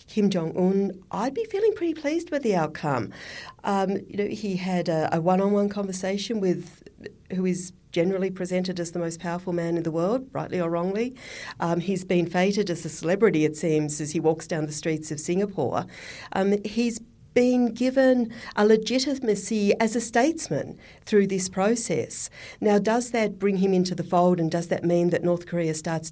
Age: 50-69